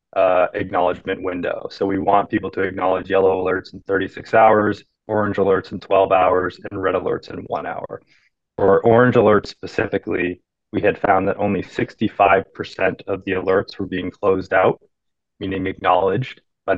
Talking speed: 160 wpm